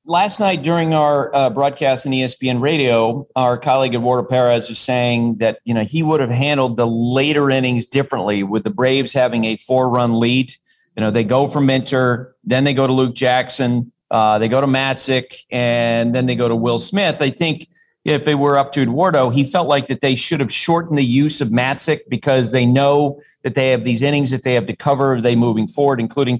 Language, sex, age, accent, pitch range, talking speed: English, male, 40-59, American, 125-145 Hz, 215 wpm